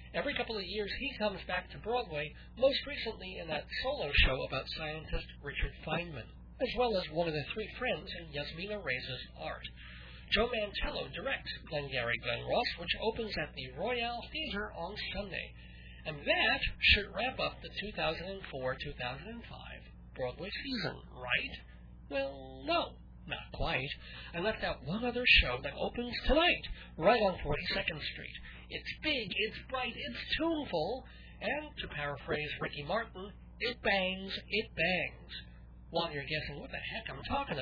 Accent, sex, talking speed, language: American, male, 150 wpm, English